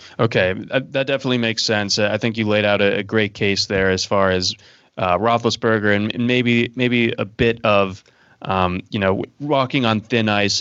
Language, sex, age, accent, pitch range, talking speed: English, male, 20-39, American, 100-115 Hz, 180 wpm